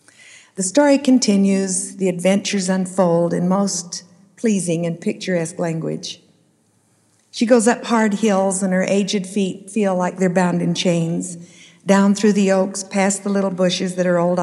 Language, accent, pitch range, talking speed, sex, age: English, American, 170-195 Hz, 160 wpm, female, 60-79